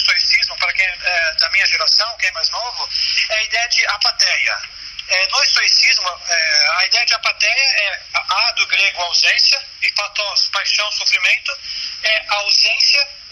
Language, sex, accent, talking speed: Portuguese, male, Brazilian, 160 wpm